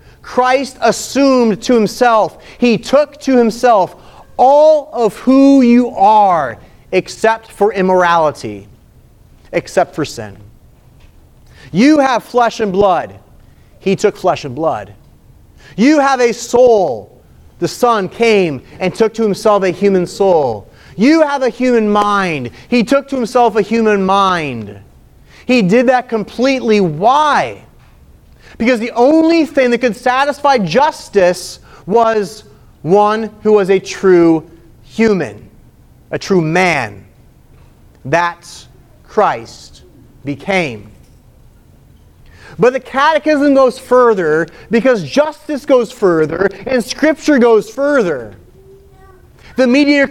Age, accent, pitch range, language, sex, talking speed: 30-49, American, 175-255 Hz, English, male, 115 wpm